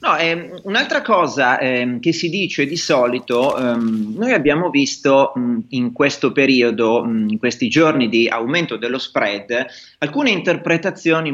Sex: male